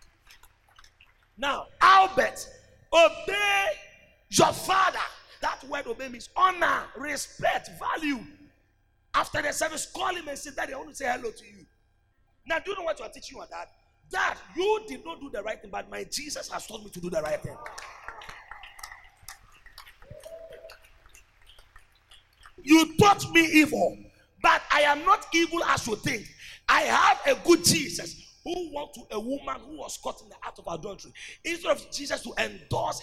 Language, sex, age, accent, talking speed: English, male, 40-59, Nigerian, 165 wpm